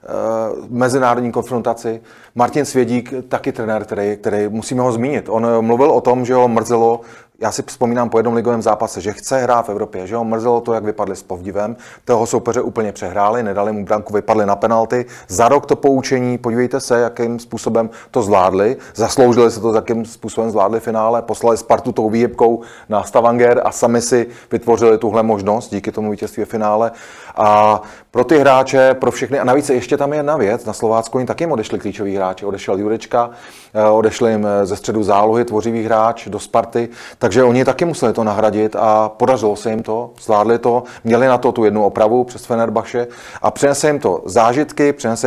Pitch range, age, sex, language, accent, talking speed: 105-120 Hz, 30-49, male, Czech, native, 185 wpm